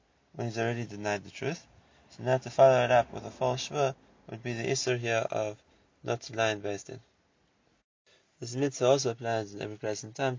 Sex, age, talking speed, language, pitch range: male, 20-39, 195 wpm, English, 115-135 Hz